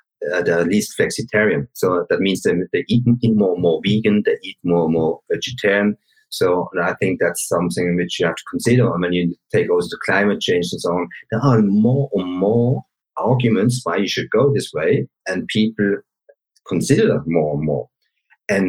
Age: 50-69